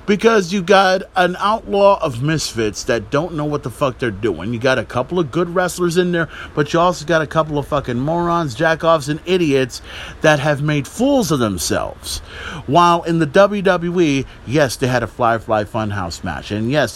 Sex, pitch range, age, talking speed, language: male, 125-185 Hz, 40-59, 200 wpm, English